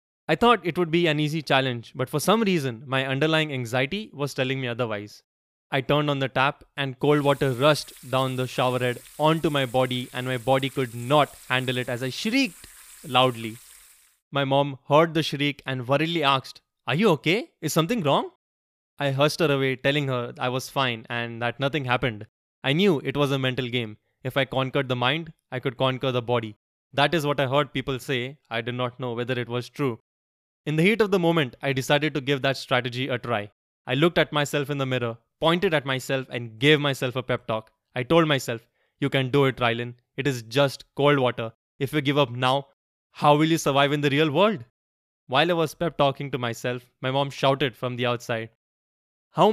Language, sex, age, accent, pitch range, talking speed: English, male, 20-39, Indian, 125-145 Hz, 210 wpm